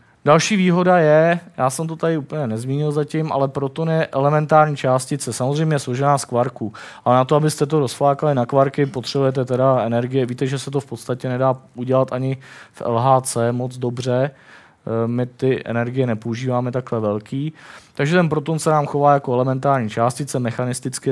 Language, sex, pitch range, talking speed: Czech, male, 125-145 Hz, 170 wpm